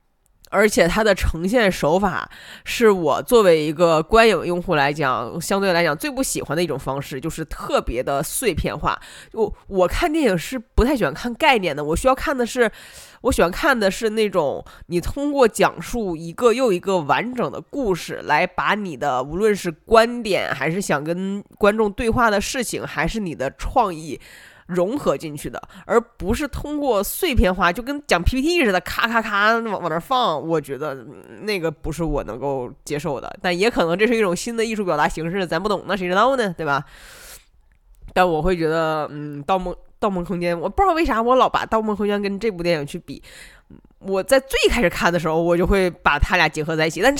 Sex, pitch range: female, 170-240 Hz